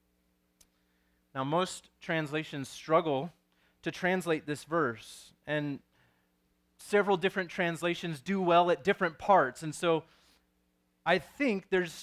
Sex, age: male, 30-49